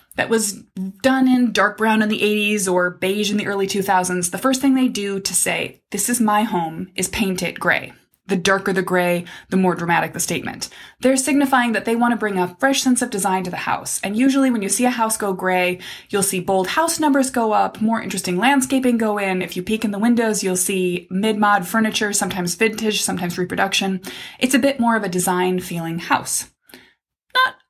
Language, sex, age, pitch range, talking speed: English, female, 20-39, 190-255 Hz, 215 wpm